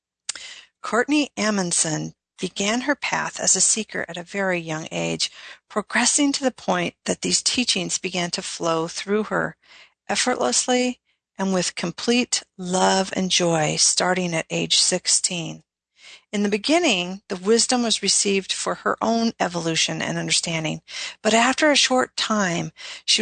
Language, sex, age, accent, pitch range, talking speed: English, female, 50-69, American, 175-230 Hz, 140 wpm